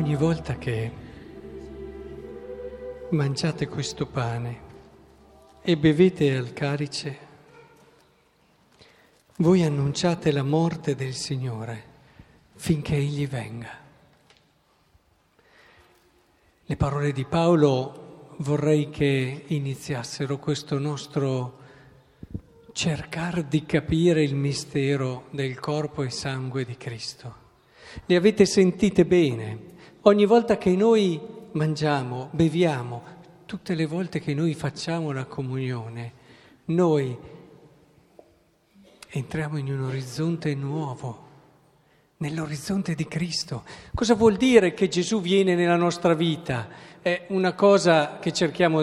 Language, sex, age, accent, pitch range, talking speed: Italian, male, 50-69, native, 140-170 Hz, 100 wpm